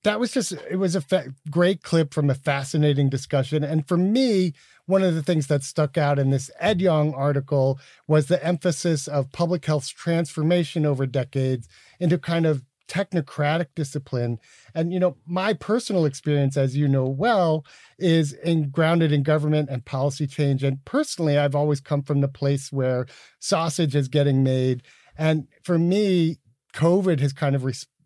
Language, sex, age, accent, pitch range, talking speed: English, male, 40-59, American, 135-165 Hz, 170 wpm